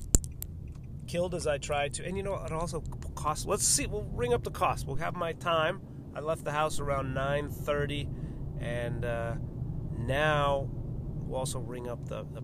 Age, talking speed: 30-49, 180 wpm